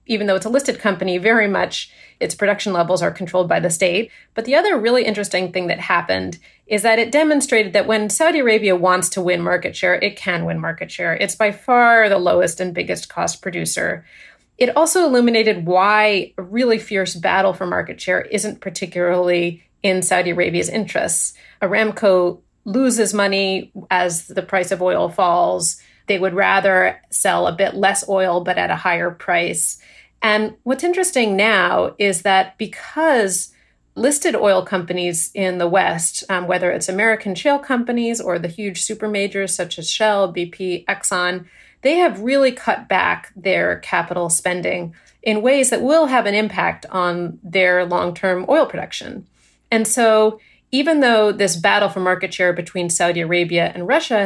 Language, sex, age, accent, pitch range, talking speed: English, female, 30-49, American, 180-225 Hz, 170 wpm